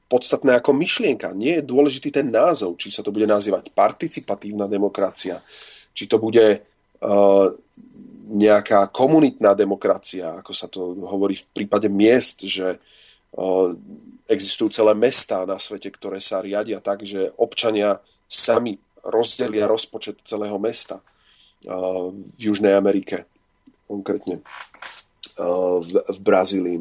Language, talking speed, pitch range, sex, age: Slovak, 125 wpm, 100-130 Hz, male, 30-49